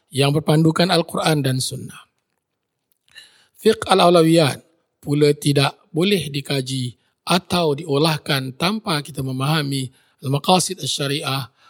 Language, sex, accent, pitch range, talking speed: English, male, Indonesian, 140-175 Hz, 90 wpm